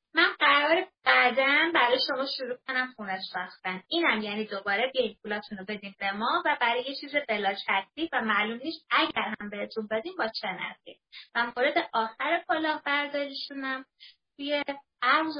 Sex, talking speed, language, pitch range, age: female, 150 wpm, Persian, 220-280 Hz, 20-39